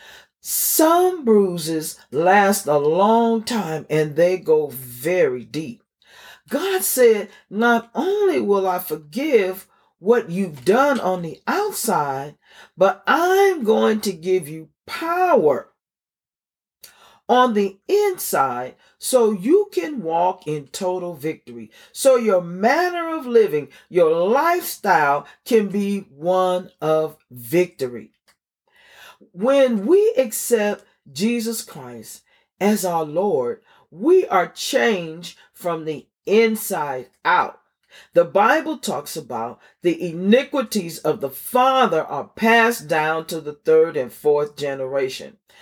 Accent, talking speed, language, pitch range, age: American, 115 wpm, English, 170-250 Hz, 40-59